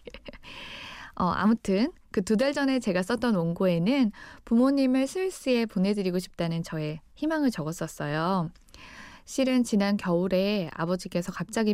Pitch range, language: 175-220 Hz, Korean